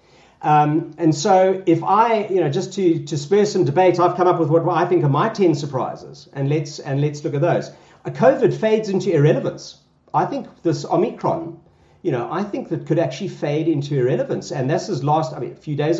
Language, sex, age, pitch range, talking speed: English, male, 50-69, 145-180 Hz, 220 wpm